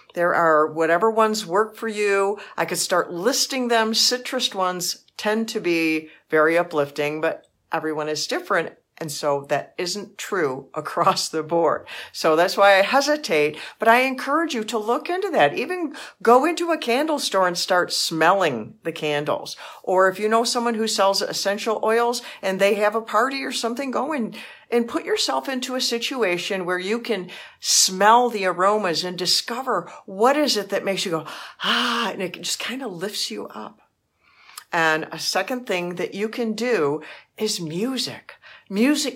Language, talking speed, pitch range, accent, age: English, 175 wpm, 170-240 Hz, American, 50-69